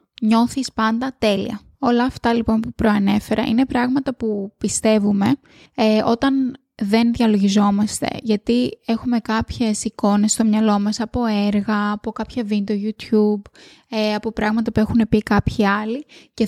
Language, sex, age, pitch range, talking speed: Greek, female, 20-39, 210-240 Hz, 140 wpm